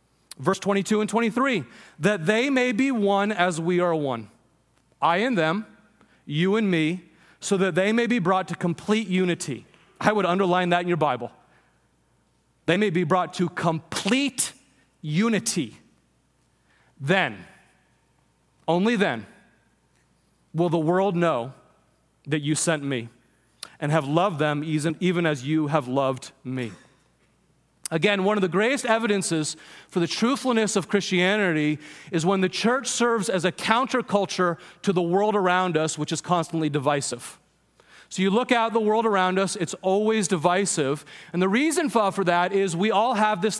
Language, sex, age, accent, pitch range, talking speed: English, male, 30-49, American, 160-220 Hz, 155 wpm